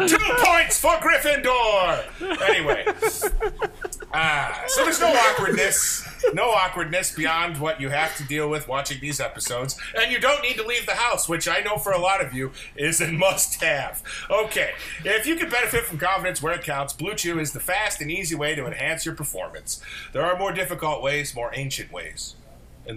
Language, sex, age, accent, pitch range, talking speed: English, male, 40-59, American, 145-210 Hz, 190 wpm